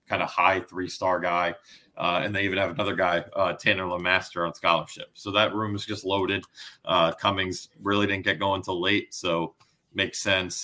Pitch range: 95-115 Hz